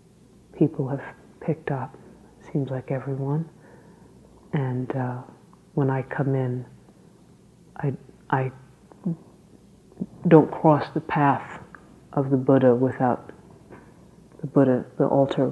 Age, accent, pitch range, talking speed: 40-59, American, 135-155 Hz, 105 wpm